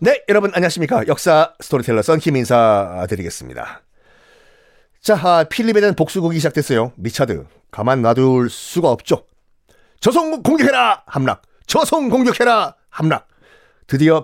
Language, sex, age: Korean, male, 40-59